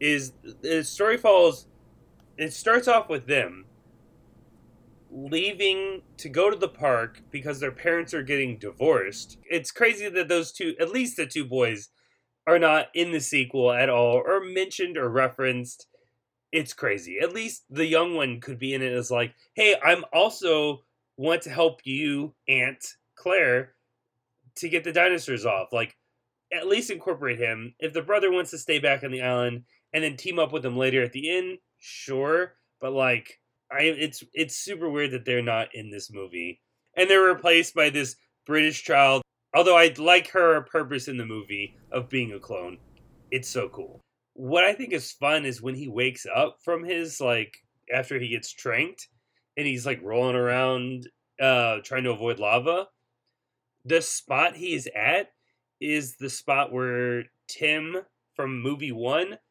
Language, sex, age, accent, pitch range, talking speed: English, male, 30-49, American, 125-165 Hz, 170 wpm